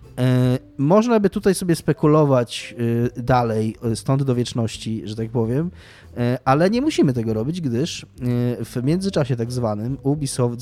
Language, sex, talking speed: Polish, male, 130 wpm